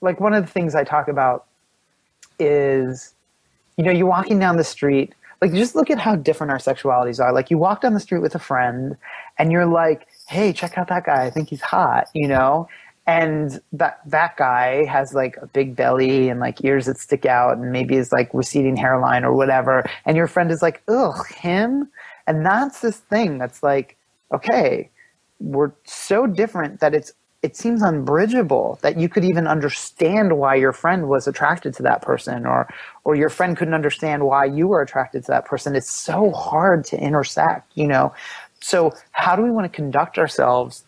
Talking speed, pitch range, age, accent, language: 195 wpm, 135-180 Hz, 30-49, American, English